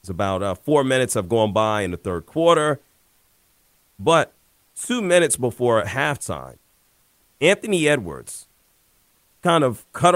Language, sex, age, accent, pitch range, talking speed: English, male, 40-59, American, 105-145 Hz, 130 wpm